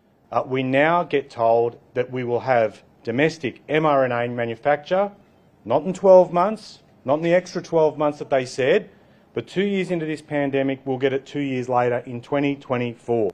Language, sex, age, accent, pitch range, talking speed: English, male, 40-59, Australian, 125-165 Hz, 175 wpm